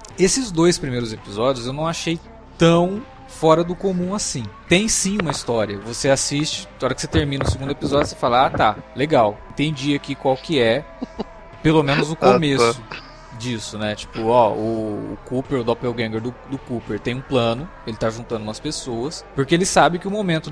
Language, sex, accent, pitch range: Portuguese, male, Brazilian, 125-160 Hz